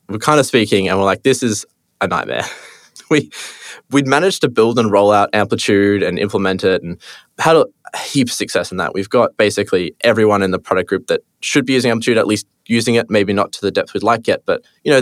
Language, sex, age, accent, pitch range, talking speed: English, male, 20-39, Australian, 100-120 Hz, 235 wpm